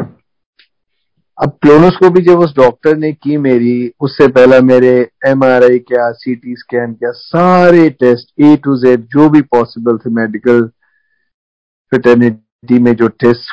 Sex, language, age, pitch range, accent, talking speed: male, Hindi, 50-69, 115-135 Hz, native, 140 wpm